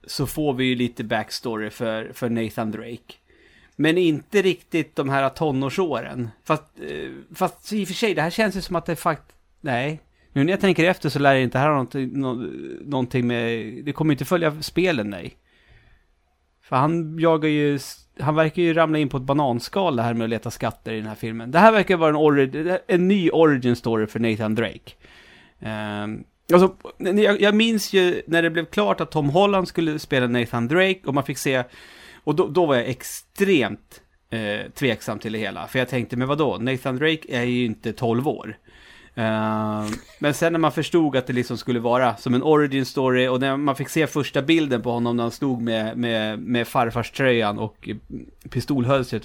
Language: Swedish